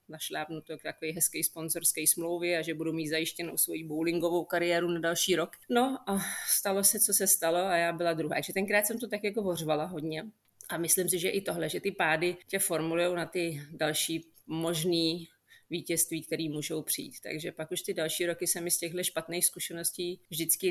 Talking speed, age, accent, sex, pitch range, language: 200 wpm, 30-49, native, female, 160-185 Hz, Czech